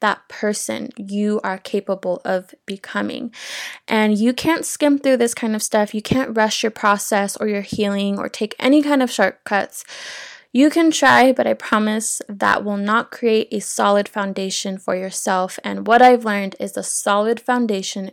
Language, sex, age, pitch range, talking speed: English, female, 20-39, 200-255 Hz, 175 wpm